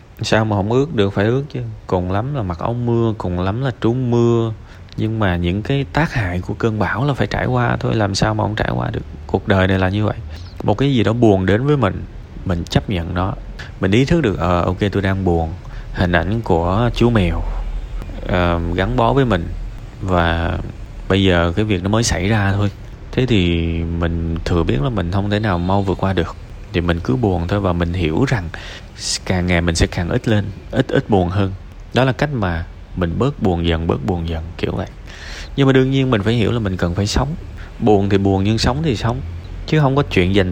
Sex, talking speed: male, 235 wpm